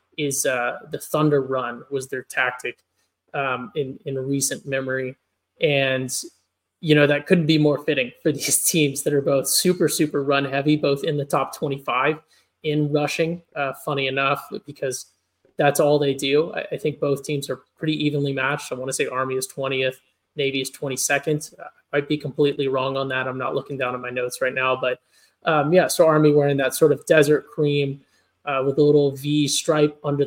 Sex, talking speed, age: male, 195 wpm, 20-39